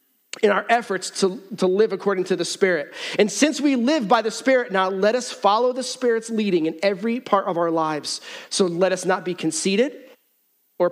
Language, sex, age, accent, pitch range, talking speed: English, male, 30-49, American, 160-230 Hz, 205 wpm